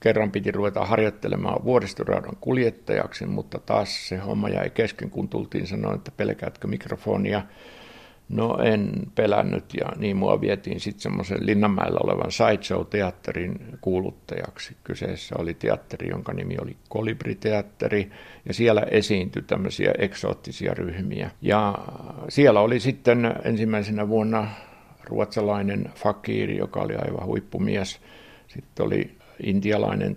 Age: 60-79